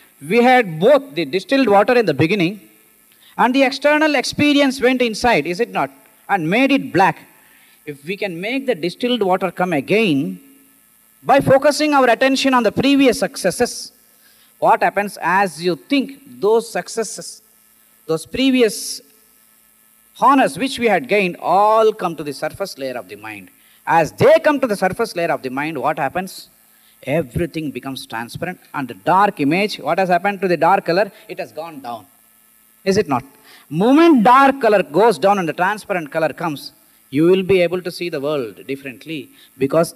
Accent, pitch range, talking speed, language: Indian, 165-245 Hz, 175 wpm, English